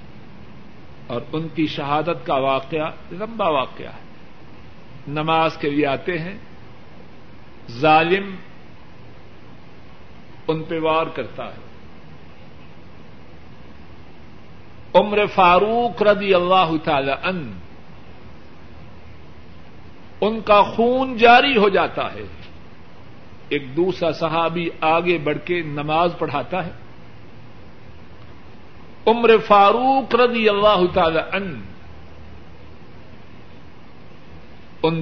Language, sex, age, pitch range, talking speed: Urdu, male, 50-69, 135-190 Hz, 80 wpm